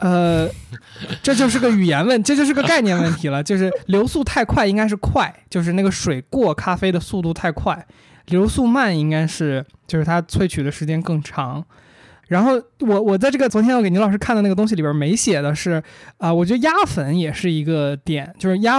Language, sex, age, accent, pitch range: Chinese, male, 20-39, native, 150-195 Hz